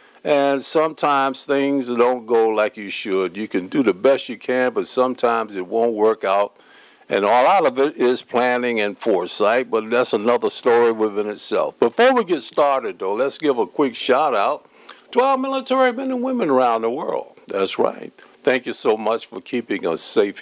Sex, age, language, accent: male, 60-79, English, American